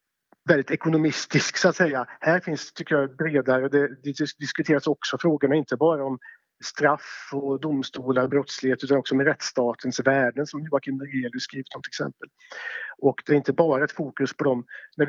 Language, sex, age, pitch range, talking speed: Swedish, male, 50-69, 130-155 Hz, 175 wpm